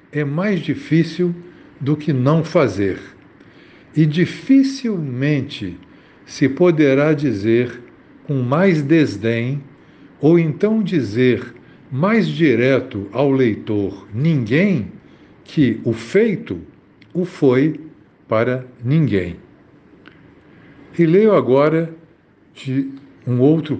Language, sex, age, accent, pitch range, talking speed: Portuguese, male, 60-79, Brazilian, 115-160 Hz, 90 wpm